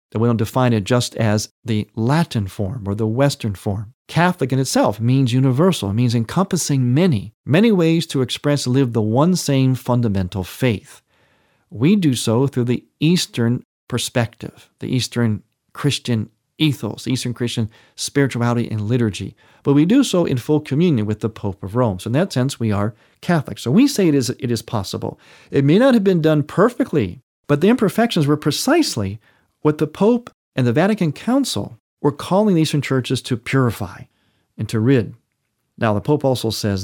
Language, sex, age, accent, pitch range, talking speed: English, male, 50-69, American, 115-160 Hz, 180 wpm